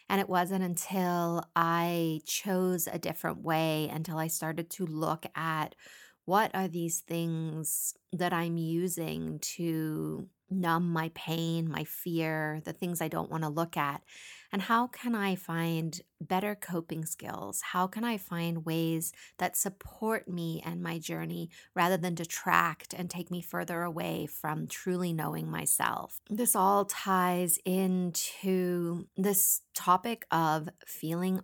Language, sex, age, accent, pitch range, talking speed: English, female, 30-49, American, 165-190 Hz, 145 wpm